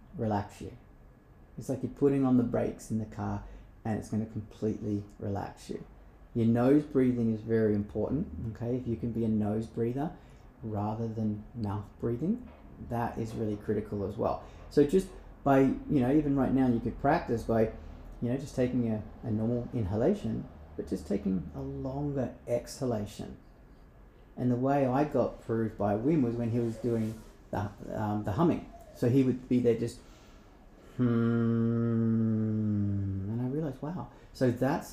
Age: 30-49